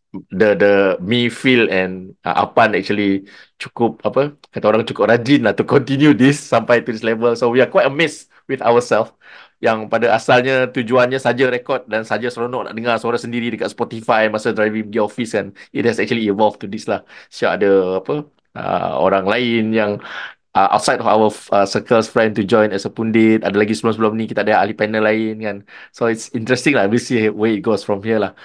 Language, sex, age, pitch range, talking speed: Malay, male, 20-39, 95-115 Hz, 210 wpm